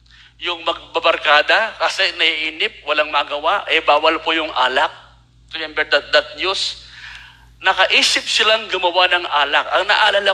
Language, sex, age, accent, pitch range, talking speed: Filipino, male, 50-69, native, 140-230 Hz, 140 wpm